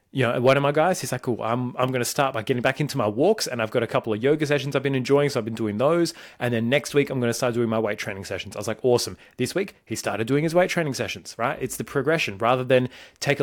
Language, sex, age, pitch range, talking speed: English, male, 30-49, 110-135 Hz, 310 wpm